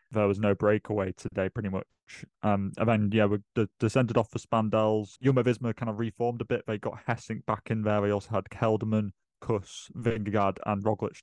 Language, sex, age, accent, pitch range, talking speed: English, male, 20-39, British, 100-115 Hz, 205 wpm